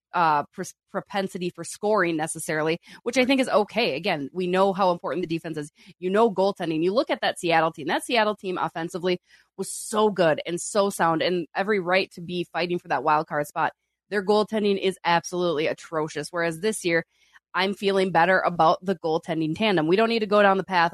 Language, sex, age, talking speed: English, female, 20-39, 205 wpm